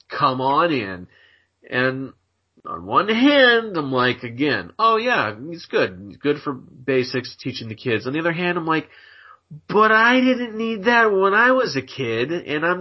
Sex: male